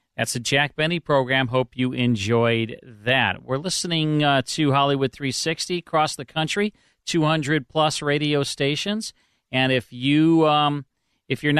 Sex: male